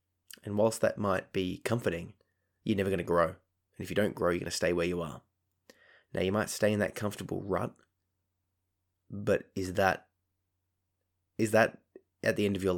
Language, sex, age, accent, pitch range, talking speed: English, male, 20-39, Australian, 90-105 Hz, 195 wpm